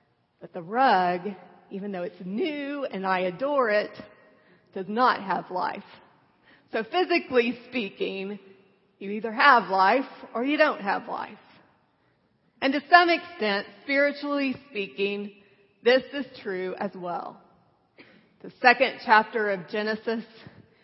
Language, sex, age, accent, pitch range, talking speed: English, female, 40-59, American, 200-260 Hz, 125 wpm